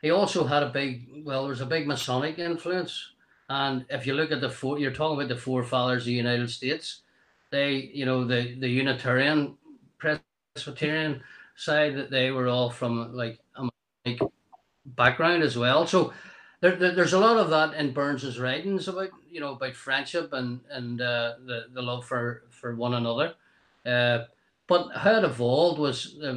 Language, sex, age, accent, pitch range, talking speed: English, male, 30-49, Irish, 120-145 Hz, 180 wpm